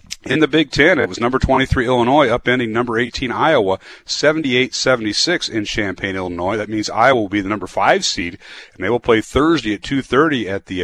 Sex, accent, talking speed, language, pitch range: male, American, 195 wpm, English, 105-130 Hz